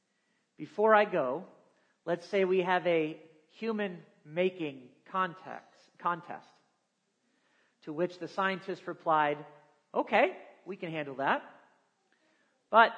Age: 40-59